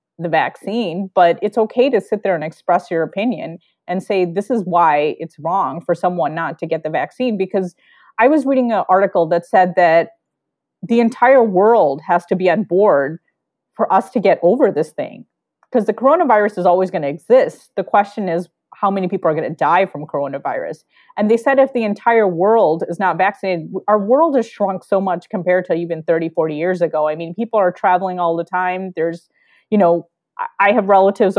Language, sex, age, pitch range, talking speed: English, female, 30-49, 175-225 Hz, 205 wpm